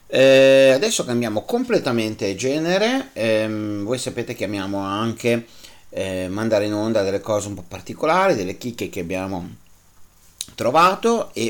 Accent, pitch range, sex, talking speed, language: native, 95-130 Hz, male, 135 wpm, Italian